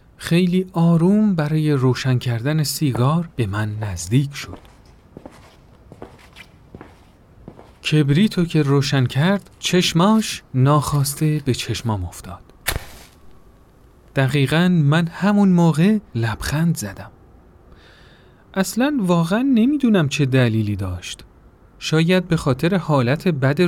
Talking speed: 90 wpm